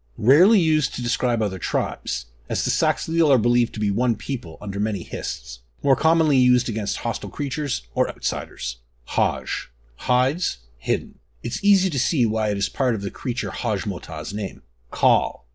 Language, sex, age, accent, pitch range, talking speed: English, male, 30-49, American, 100-145 Hz, 165 wpm